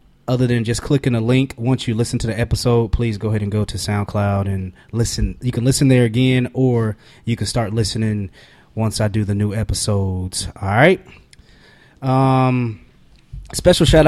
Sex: male